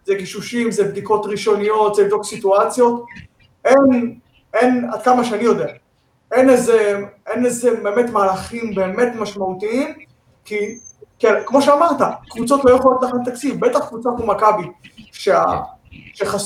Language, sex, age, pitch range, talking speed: Hebrew, male, 20-39, 185-230 Hz, 130 wpm